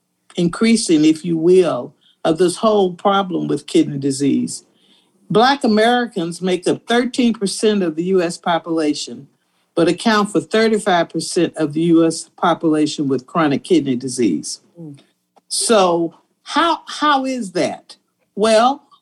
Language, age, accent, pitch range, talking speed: English, 50-69, American, 155-205 Hz, 120 wpm